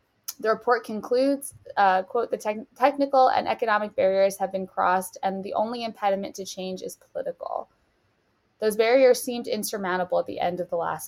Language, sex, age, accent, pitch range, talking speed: English, female, 20-39, American, 185-215 Hz, 170 wpm